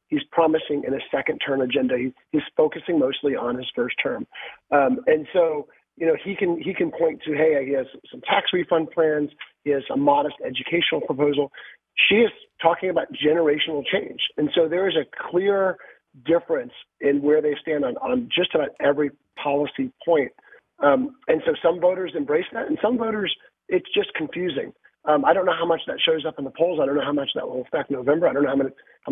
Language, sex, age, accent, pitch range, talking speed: English, male, 40-59, American, 140-180 Hz, 210 wpm